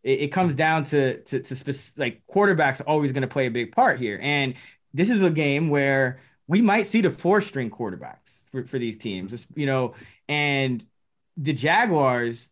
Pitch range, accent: 135-170 Hz, American